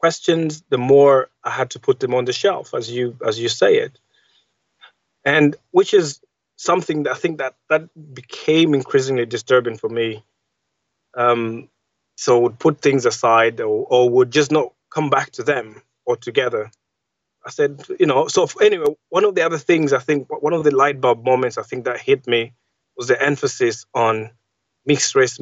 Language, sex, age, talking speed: English, male, 20-39, 185 wpm